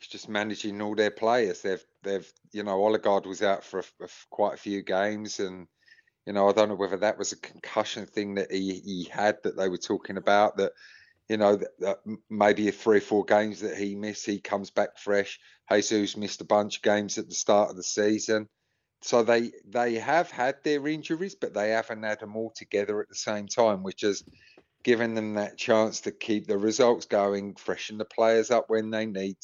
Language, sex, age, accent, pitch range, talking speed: English, male, 30-49, British, 105-115 Hz, 215 wpm